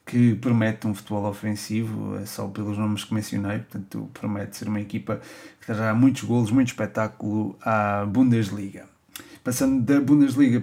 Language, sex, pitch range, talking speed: Portuguese, male, 110-130 Hz, 150 wpm